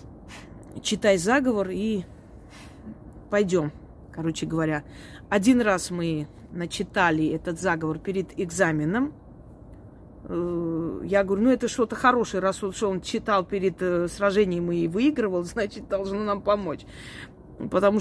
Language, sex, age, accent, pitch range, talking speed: Russian, female, 30-49, native, 165-220 Hz, 105 wpm